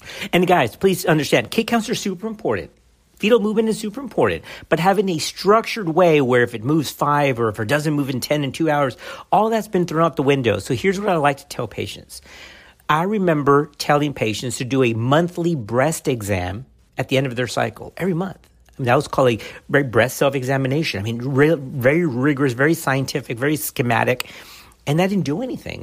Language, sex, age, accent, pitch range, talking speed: English, male, 50-69, American, 125-170 Hz, 200 wpm